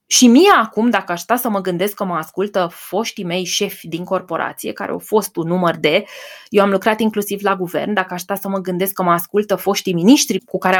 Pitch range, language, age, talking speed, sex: 185-240 Hz, Romanian, 20-39, 230 wpm, female